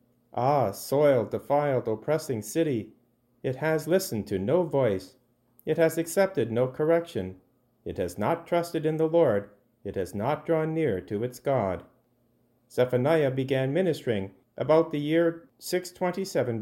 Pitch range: 110-150 Hz